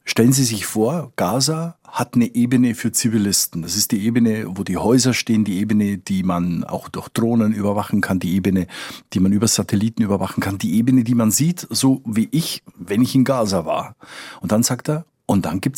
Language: German